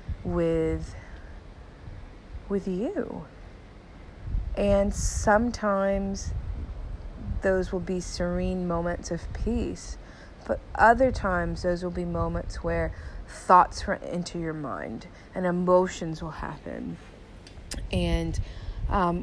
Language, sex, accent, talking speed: English, female, American, 95 wpm